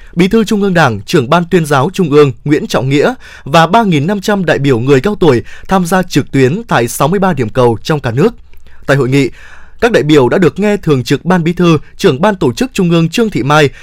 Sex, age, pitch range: male, 20-39, 140-200 Hz